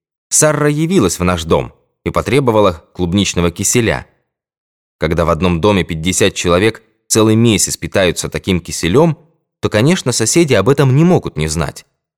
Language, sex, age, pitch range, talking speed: Russian, male, 20-39, 85-125 Hz, 145 wpm